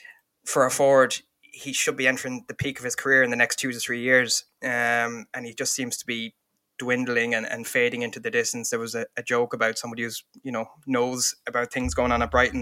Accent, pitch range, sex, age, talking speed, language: Irish, 120-140 Hz, male, 20-39, 240 wpm, English